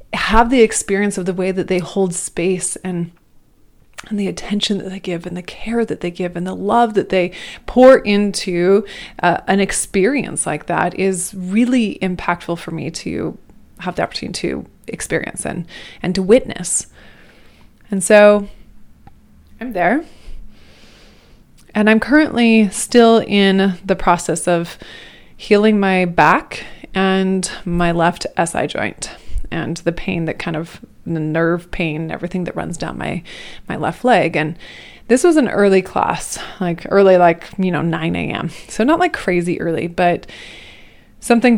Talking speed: 155 wpm